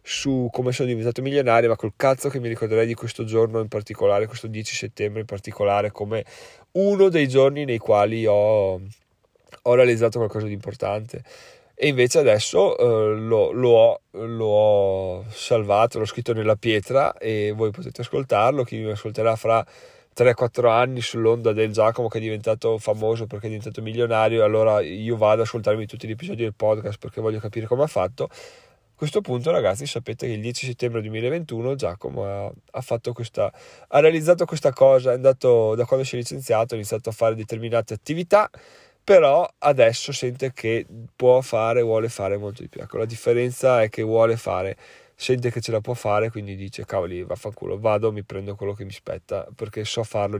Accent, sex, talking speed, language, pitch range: native, male, 180 wpm, Italian, 105-125 Hz